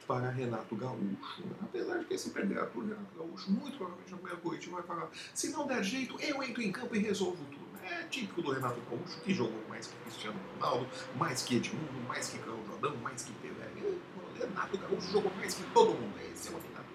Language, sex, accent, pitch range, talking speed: Portuguese, male, Brazilian, 140-215 Hz, 225 wpm